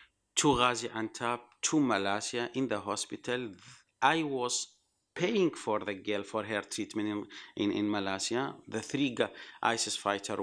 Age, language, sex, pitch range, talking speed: 50-69, Spanish, male, 100-135 Hz, 145 wpm